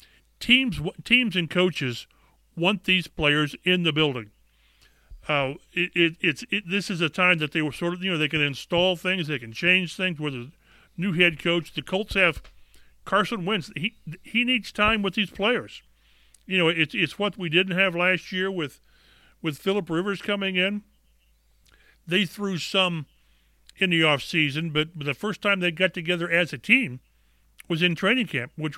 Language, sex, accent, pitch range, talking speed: English, male, American, 145-195 Hz, 190 wpm